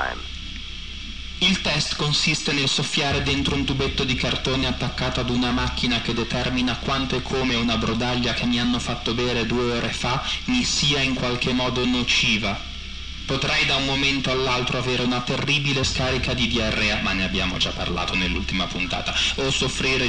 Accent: native